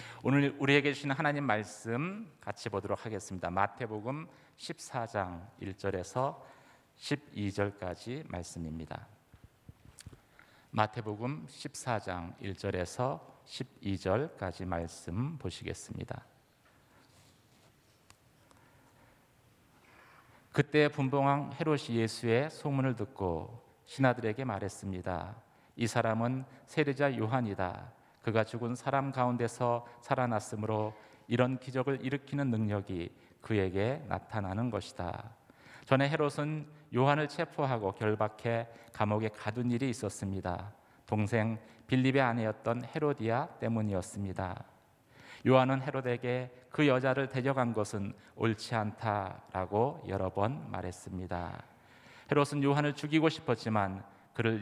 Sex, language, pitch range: male, Korean, 100-135 Hz